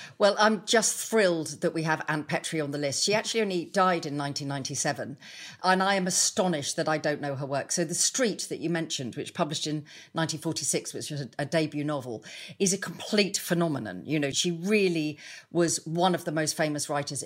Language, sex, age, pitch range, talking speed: English, female, 40-59, 150-185 Hz, 205 wpm